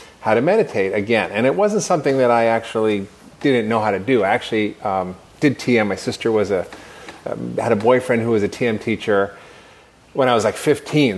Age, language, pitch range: 30-49, English, 105-140 Hz